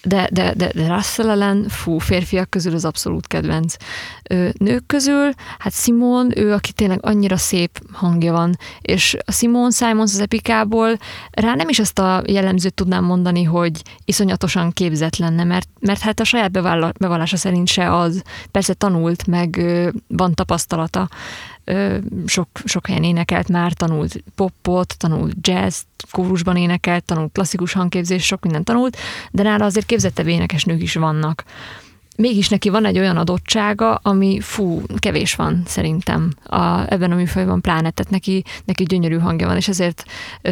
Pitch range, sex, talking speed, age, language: 170-205 Hz, female, 155 wpm, 30-49, Hungarian